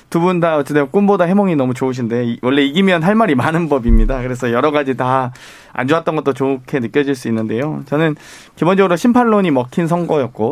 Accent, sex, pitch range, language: native, male, 125-160 Hz, Korean